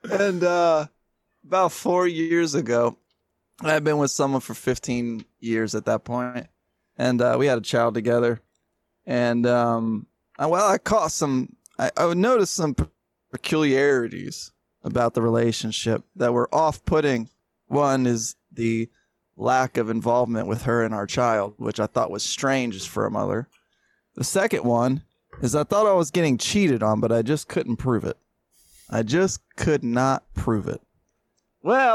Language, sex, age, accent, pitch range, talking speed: English, male, 20-39, American, 115-150 Hz, 160 wpm